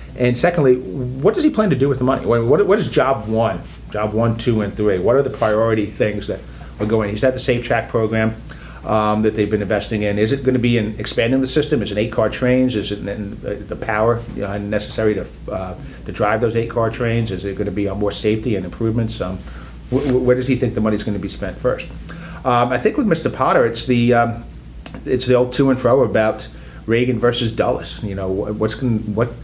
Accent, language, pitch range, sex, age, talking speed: American, English, 100-120 Hz, male, 40-59, 230 wpm